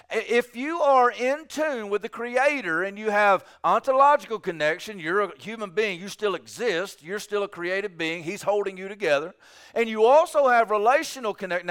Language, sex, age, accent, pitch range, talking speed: English, male, 50-69, American, 165-250 Hz, 180 wpm